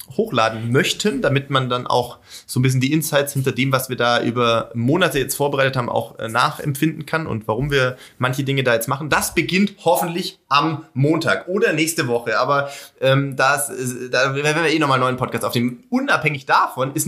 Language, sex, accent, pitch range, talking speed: German, male, German, 130-160 Hz, 195 wpm